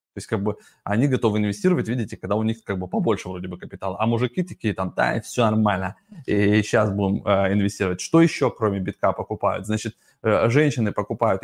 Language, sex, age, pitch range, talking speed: Russian, male, 20-39, 105-130 Hz, 205 wpm